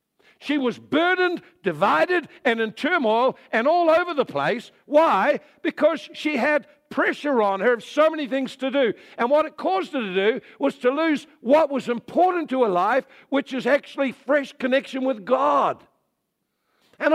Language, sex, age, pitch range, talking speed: English, male, 60-79, 220-305 Hz, 170 wpm